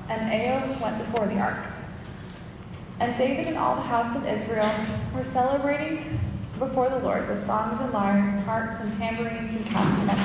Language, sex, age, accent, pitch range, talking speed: English, female, 20-39, American, 205-240 Hz, 170 wpm